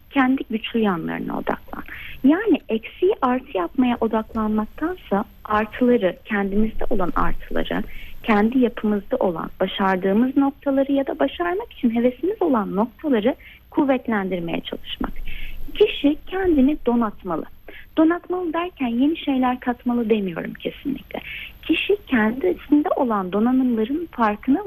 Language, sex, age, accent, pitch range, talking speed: Turkish, female, 30-49, native, 220-300 Hz, 105 wpm